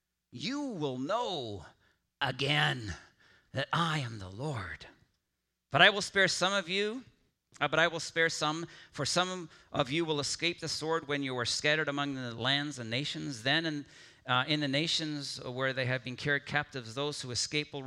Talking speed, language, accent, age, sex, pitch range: 185 wpm, English, American, 40-59, male, 110-150 Hz